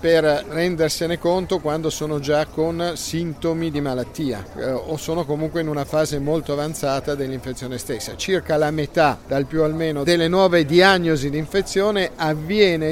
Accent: native